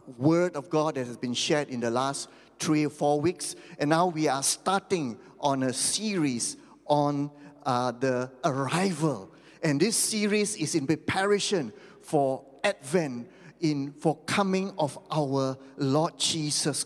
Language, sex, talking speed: English, male, 145 wpm